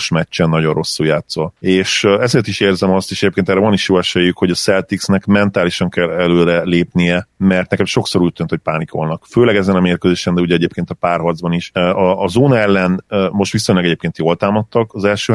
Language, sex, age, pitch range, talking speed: Hungarian, male, 30-49, 85-100 Hz, 195 wpm